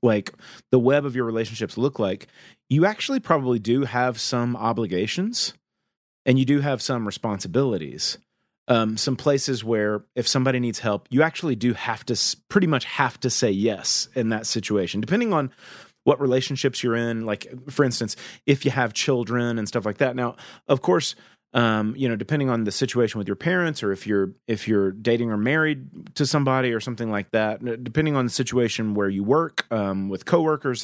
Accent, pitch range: American, 110-135 Hz